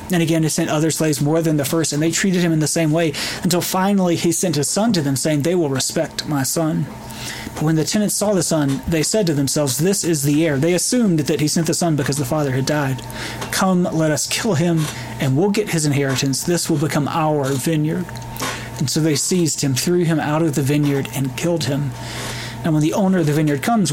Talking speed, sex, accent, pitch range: 240 wpm, male, American, 135-170 Hz